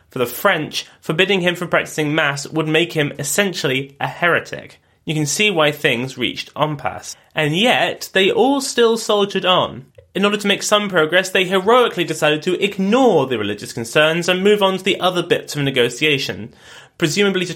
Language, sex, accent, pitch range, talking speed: English, male, British, 145-190 Hz, 180 wpm